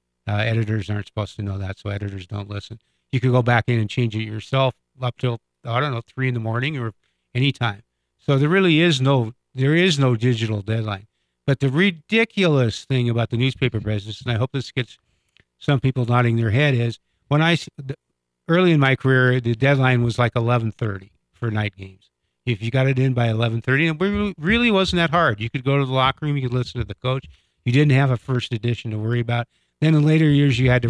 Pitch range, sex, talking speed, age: 110-130 Hz, male, 225 wpm, 50-69